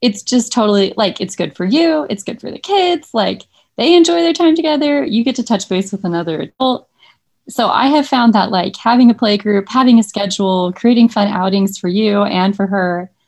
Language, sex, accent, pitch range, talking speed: English, female, American, 175-220 Hz, 215 wpm